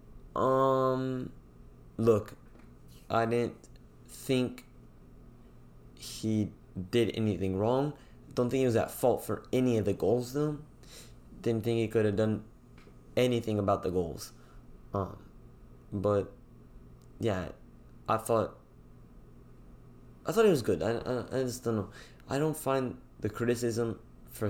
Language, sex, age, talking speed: English, male, 20-39, 130 wpm